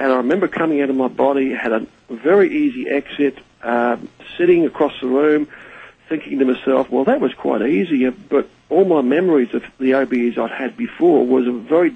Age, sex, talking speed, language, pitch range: 50-69, male, 195 wpm, English, 125-145 Hz